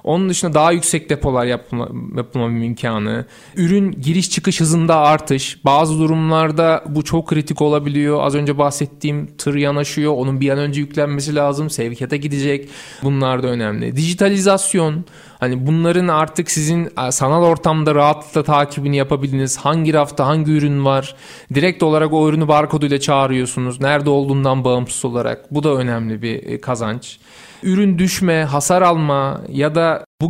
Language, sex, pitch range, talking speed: Turkish, male, 135-165 Hz, 140 wpm